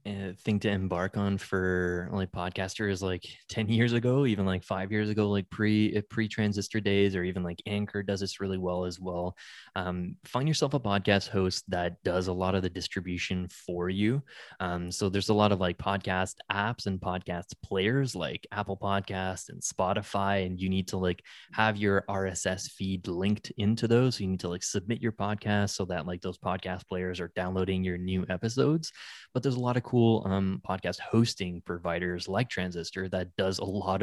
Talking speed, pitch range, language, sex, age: 195 wpm, 90-105 Hz, English, male, 20-39